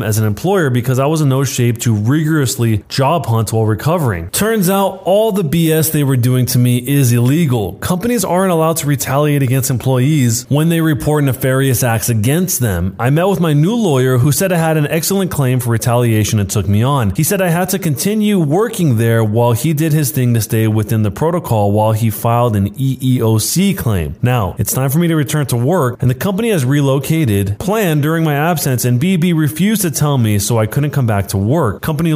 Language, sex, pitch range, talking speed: English, male, 110-155 Hz, 215 wpm